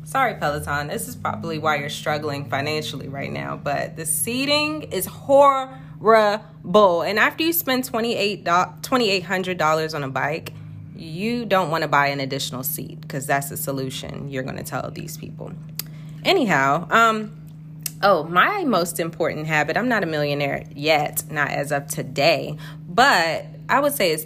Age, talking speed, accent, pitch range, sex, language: 20-39, 155 wpm, American, 145-170 Hz, female, English